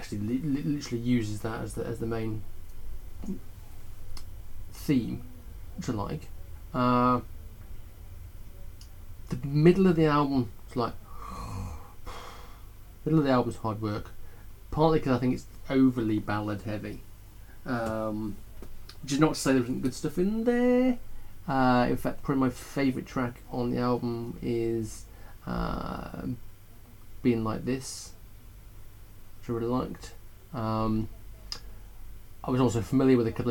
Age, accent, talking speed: 30-49, British, 125 wpm